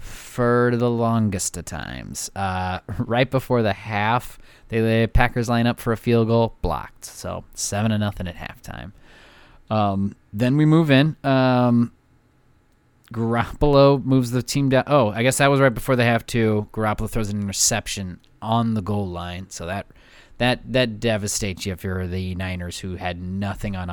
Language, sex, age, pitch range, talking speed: English, male, 30-49, 95-125 Hz, 175 wpm